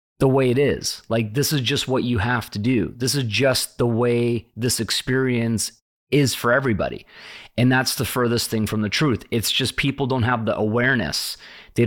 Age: 30-49